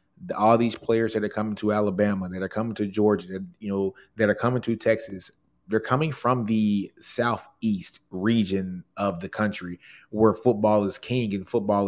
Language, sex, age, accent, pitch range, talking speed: English, male, 20-39, American, 100-115 Hz, 180 wpm